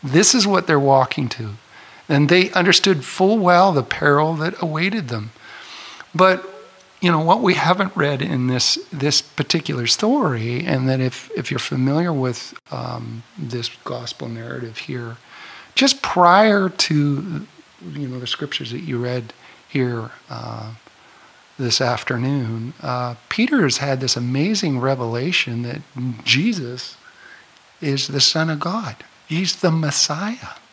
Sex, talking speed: male, 140 wpm